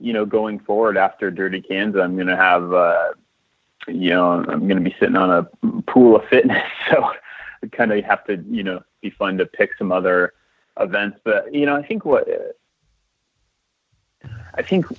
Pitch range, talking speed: 95-120 Hz, 190 wpm